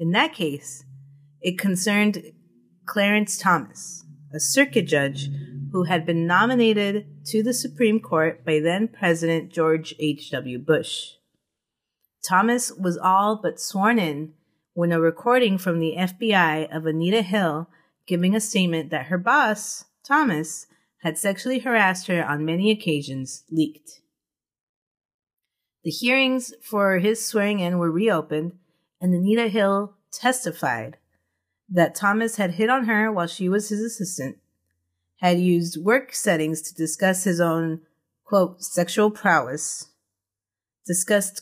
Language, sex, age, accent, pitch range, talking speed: English, female, 30-49, American, 160-210 Hz, 125 wpm